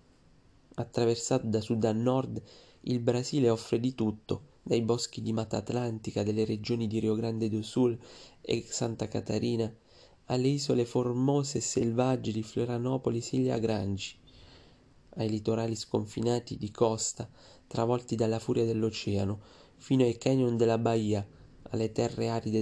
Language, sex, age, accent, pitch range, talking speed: Italian, male, 30-49, native, 110-120 Hz, 130 wpm